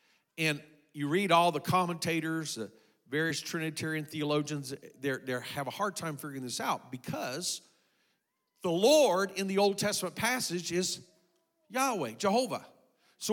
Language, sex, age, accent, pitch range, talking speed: English, male, 50-69, American, 150-220 Hz, 135 wpm